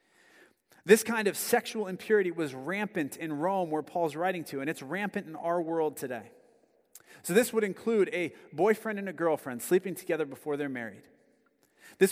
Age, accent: 30-49, American